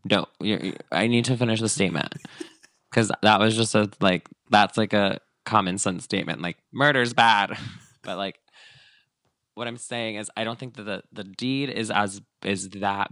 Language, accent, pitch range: English, American, 95-120 Hz